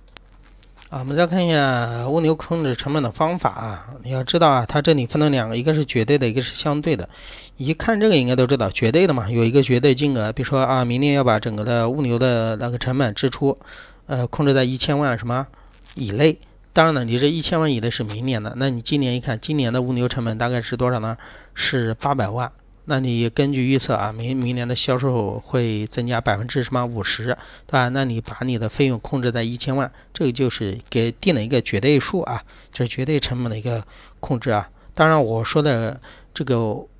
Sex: male